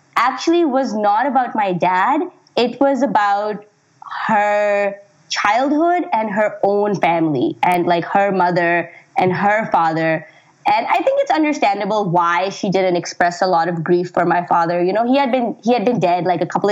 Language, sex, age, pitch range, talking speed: English, female, 20-39, 175-240 Hz, 180 wpm